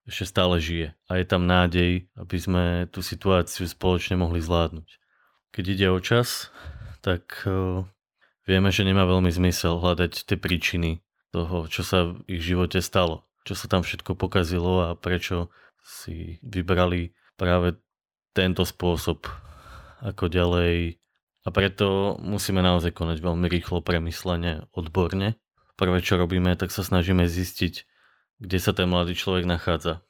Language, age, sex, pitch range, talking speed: Slovak, 20-39, male, 90-95 Hz, 140 wpm